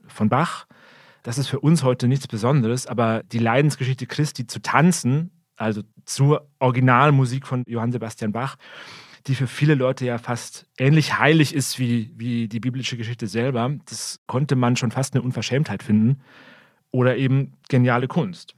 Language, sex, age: German, male, 40-59